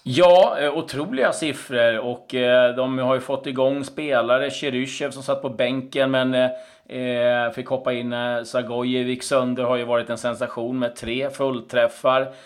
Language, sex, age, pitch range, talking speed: Swedish, male, 30-49, 115-140 Hz, 155 wpm